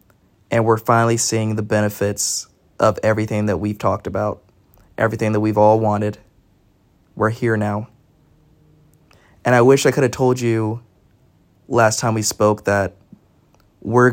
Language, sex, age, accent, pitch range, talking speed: English, male, 20-39, American, 105-120 Hz, 145 wpm